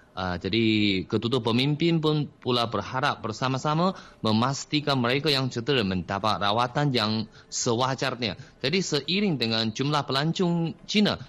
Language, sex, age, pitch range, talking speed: Malay, male, 20-39, 110-150 Hz, 115 wpm